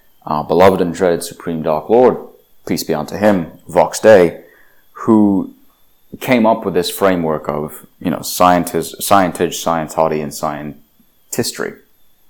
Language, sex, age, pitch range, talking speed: English, male, 30-49, 75-95 Hz, 130 wpm